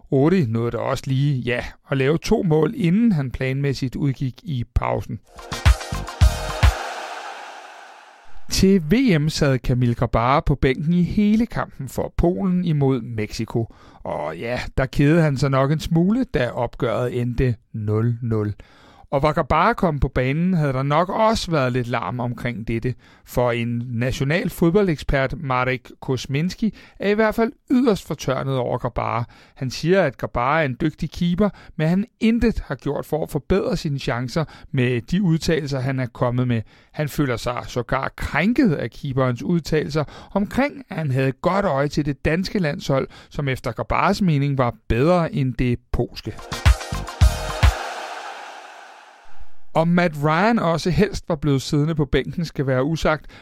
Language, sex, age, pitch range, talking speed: Danish, male, 60-79, 125-175 Hz, 155 wpm